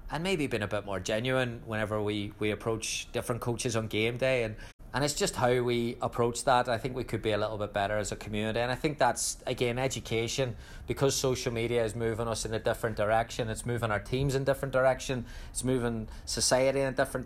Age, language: 20-39, English